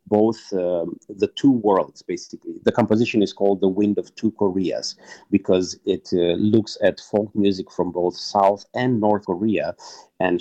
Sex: male